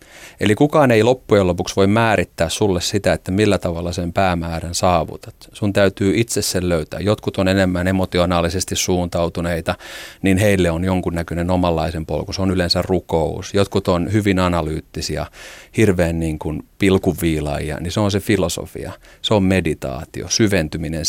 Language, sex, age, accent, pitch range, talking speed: Finnish, male, 40-59, native, 80-95 Hz, 145 wpm